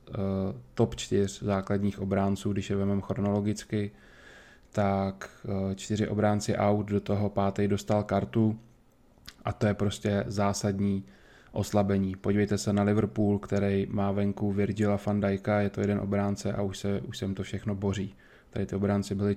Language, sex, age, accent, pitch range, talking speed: Czech, male, 20-39, native, 100-105 Hz, 150 wpm